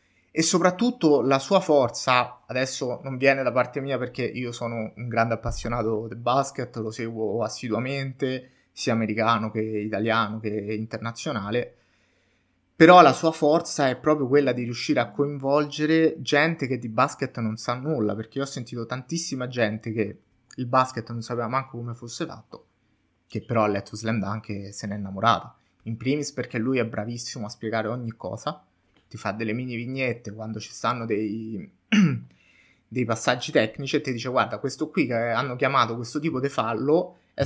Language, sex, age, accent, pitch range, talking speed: Italian, male, 20-39, native, 110-140 Hz, 170 wpm